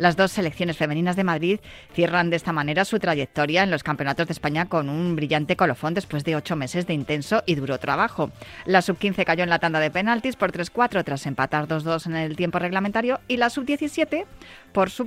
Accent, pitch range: Spanish, 150-185 Hz